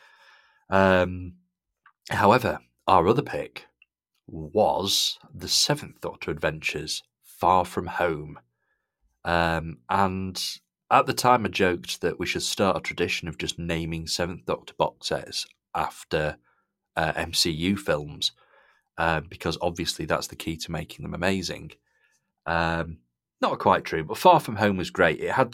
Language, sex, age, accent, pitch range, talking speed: English, male, 30-49, British, 80-95 Hz, 135 wpm